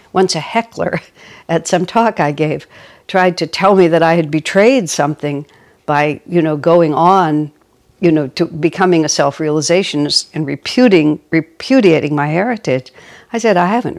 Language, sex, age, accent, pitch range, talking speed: English, female, 60-79, American, 155-195 Hz, 155 wpm